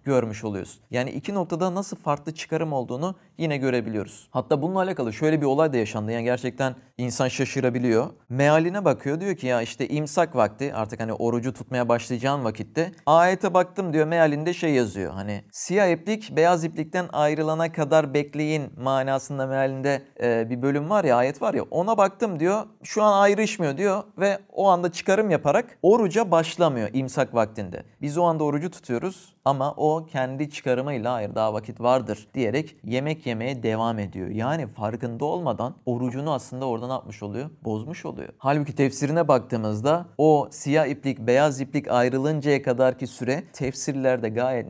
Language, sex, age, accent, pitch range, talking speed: Turkish, male, 40-59, native, 120-155 Hz, 155 wpm